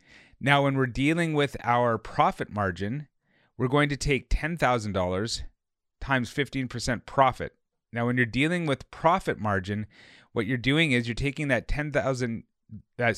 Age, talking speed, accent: 30-49, 150 wpm, American